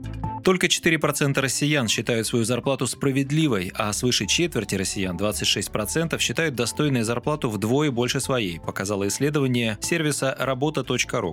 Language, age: Russian, 20-39